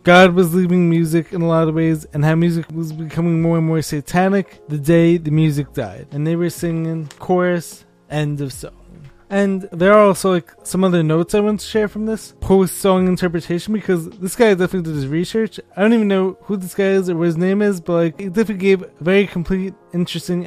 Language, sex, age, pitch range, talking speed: English, male, 20-39, 165-200 Hz, 225 wpm